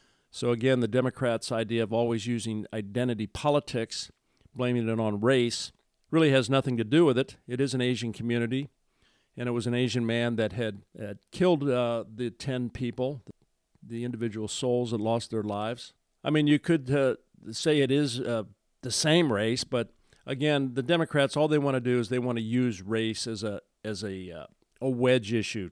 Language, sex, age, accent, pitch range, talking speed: English, male, 50-69, American, 105-125 Hz, 190 wpm